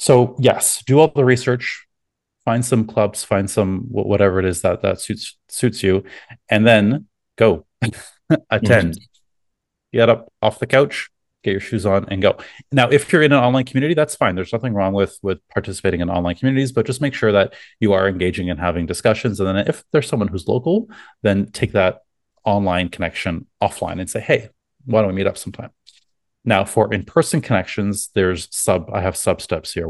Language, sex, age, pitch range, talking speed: English, male, 30-49, 90-115 Hz, 195 wpm